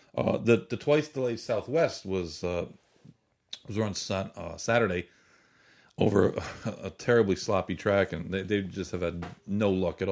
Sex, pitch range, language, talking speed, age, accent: male, 90-105 Hz, English, 160 wpm, 40-59, American